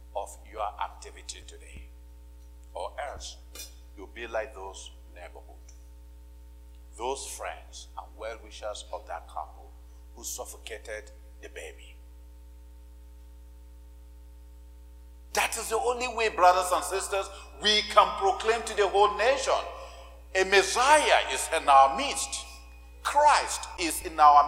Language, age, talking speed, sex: English, 50-69, 115 wpm, male